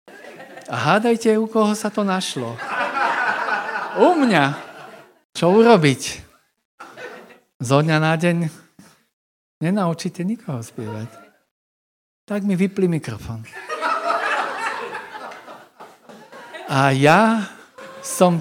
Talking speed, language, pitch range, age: 80 wpm, Slovak, 135-180 Hz, 50-69